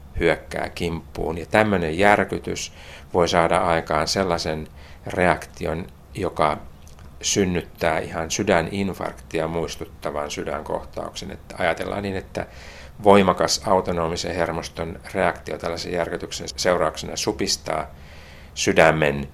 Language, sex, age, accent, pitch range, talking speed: Finnish, male, 50-69, native, 75-90 Hz, 90 wpm